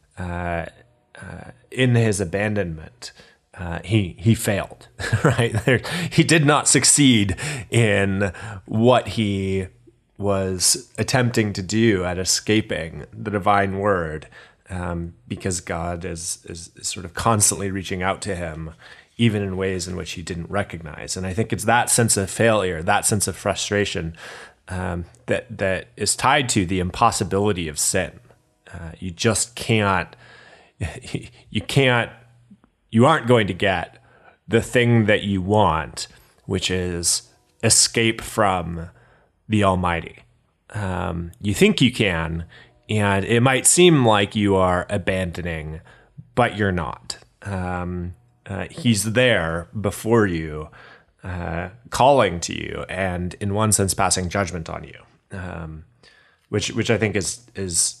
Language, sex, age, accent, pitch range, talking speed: English, male, 30-49, American, 90-115 Hz, 135 wpm